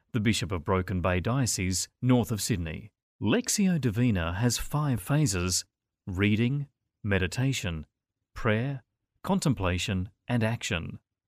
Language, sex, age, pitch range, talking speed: English, male, 40-59, 95-130 Hz, 105 wpm